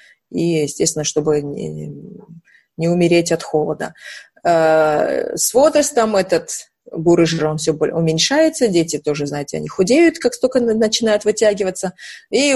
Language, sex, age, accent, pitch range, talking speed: Russian, female, 20-39, native, 170-245 Hz, 135 wpm